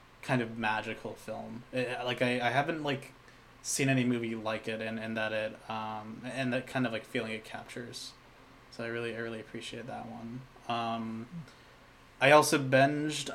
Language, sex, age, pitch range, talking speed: English, male, 20-39, 110-130 Hz, 180 wpm